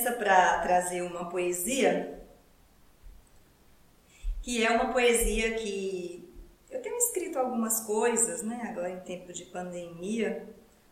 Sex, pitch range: female, 180-230 Hz